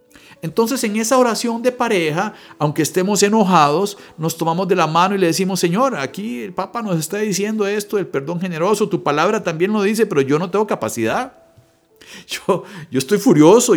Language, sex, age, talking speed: Spanish, male, 50-69, 185 wpm